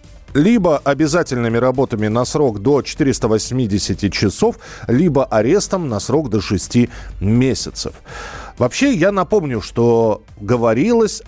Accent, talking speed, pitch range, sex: native, 105 wpm, 115-170 Hz, male